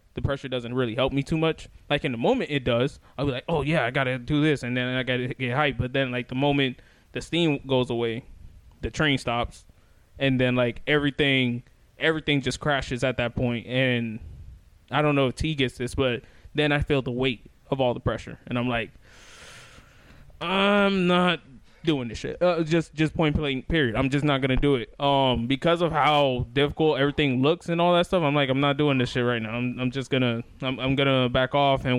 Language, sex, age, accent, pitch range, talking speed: English, male, 20-39, American, 125-150 Hz, 225 wpm